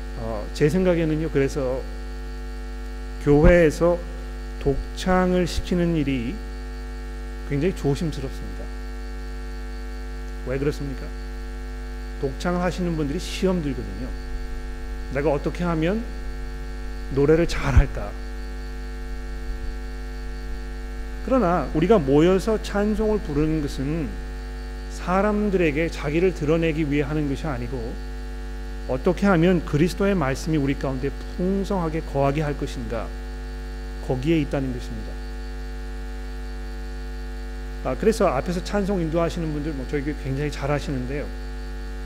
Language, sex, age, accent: Korean, male, 40-59, native